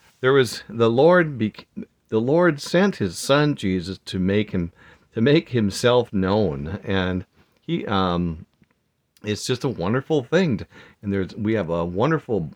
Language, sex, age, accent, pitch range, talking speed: English, male, 50-69, American, 95-140 Hz, 160 wpm